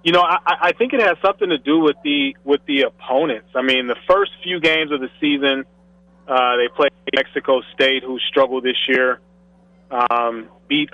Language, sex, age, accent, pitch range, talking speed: English, male, 30-49, American, 125-175 Hz, 190 wpm